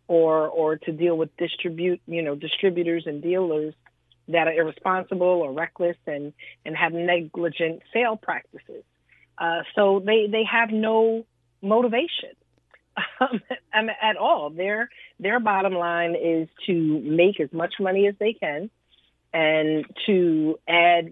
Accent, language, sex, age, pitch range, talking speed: American, English, female, 40-59, 160-190 Hz, 135 wpm